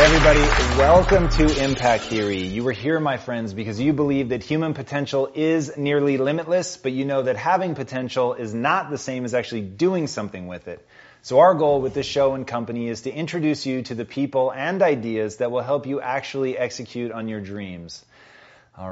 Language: Hindi